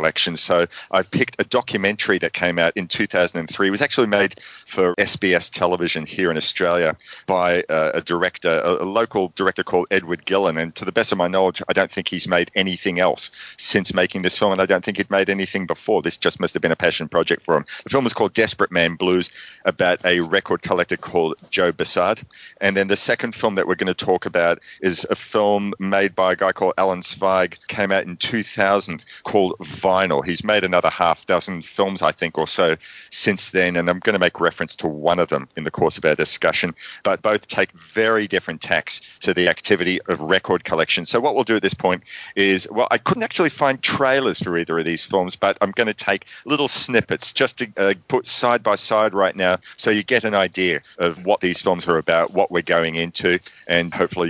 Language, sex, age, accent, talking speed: English, male, 40-59, Australian, 220 wpm